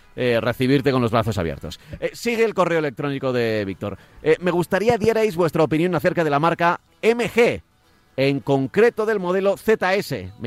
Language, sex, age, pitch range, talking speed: Spanish, male, 40-59, 135-190 Hz, 165 wpm